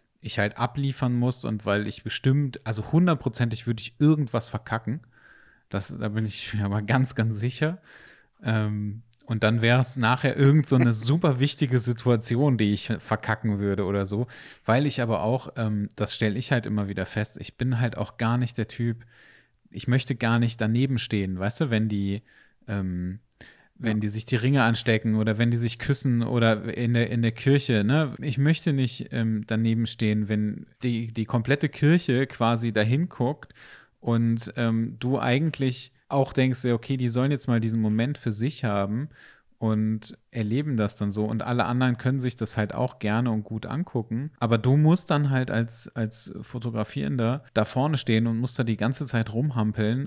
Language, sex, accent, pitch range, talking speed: German, male, German, 110-130 Hz, 185 wpm